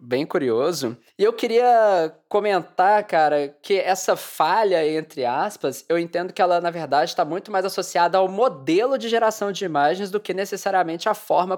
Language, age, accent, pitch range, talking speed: English, 20-39, Brazilian, 155-210 Hz, 170 wpm